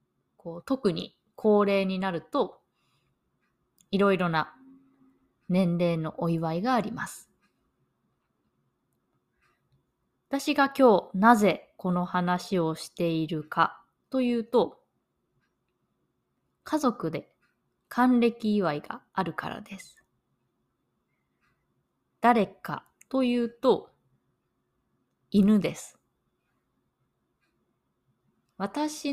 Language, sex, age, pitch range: Japanese, female, 20-39, 165-240 Hz